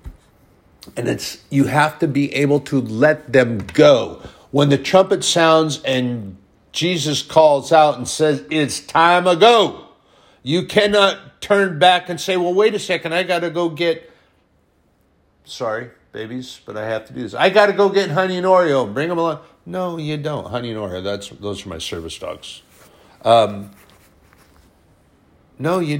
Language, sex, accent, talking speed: English, male, American, 175 wpm